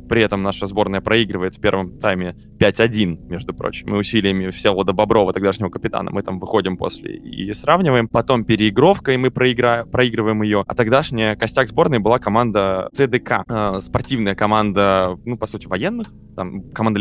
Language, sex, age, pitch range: Russian, male, 20-39, 100-120 Hz